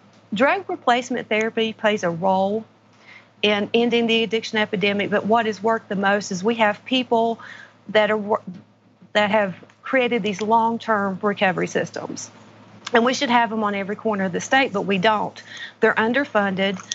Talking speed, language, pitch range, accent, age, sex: 160 wpm, English, 195-225 Hz, American, 40-59, female